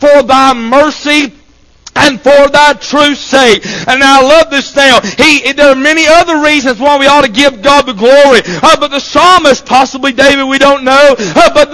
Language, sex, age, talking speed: English, male, 50-69, 190 wpm